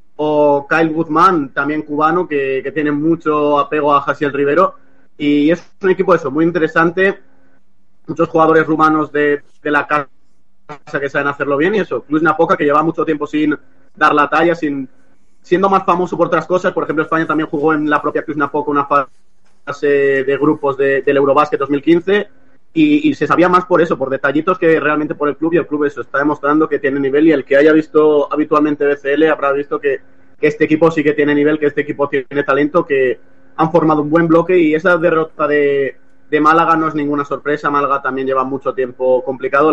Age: 30-49